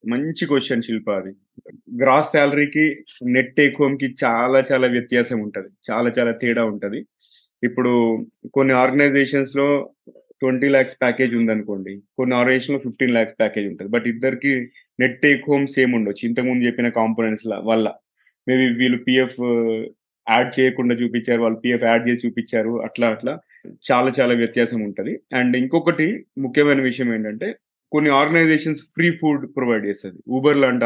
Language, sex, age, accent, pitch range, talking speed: Telugu, male, 20-39, native, 120-145 Hz, 145 wpm